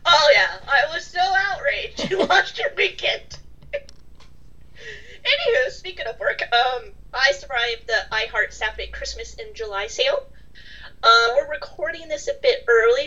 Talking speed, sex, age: 140 wpm, female, 30-49